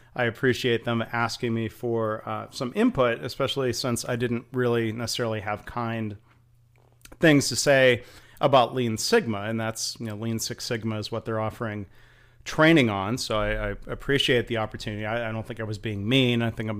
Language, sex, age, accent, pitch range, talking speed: English, male, 30-49, American, 115-135 Hz, 190 wpm